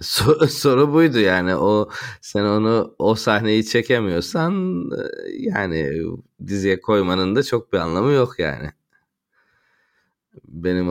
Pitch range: 80-100 Hz